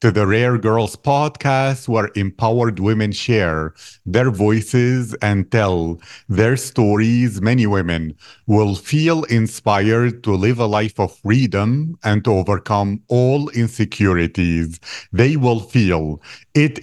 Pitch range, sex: 100-125 Hz, male